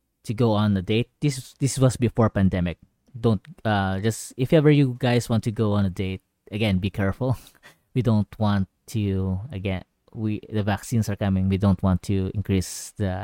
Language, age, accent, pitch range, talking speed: English, 20-39, Filipino, 100-130 Hz, 190 wpm